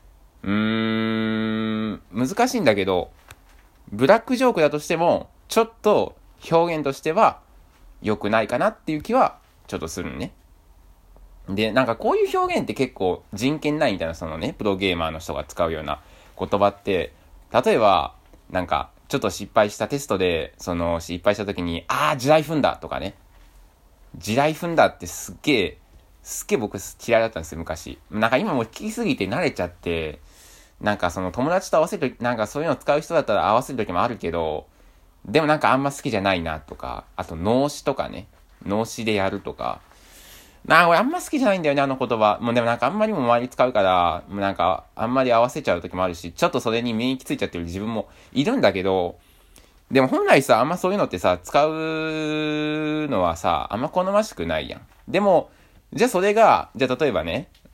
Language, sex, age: Japanese, male, 20-39